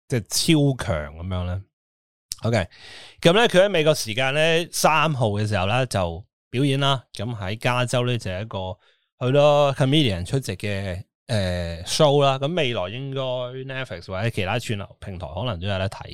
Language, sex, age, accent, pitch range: Chinese, male, 20-39, native, 95-135 Hz